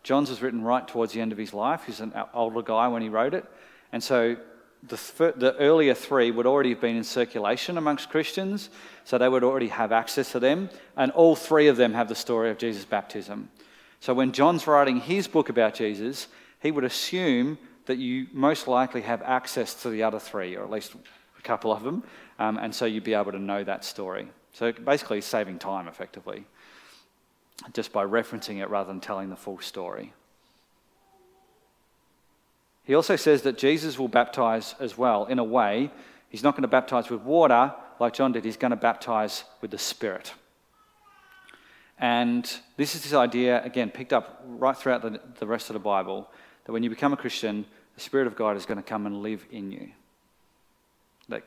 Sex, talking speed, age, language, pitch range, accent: male, 195 wpm, 30-49, English, 110-140 Hz, Australian